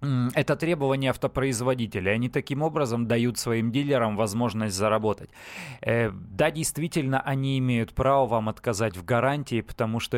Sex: male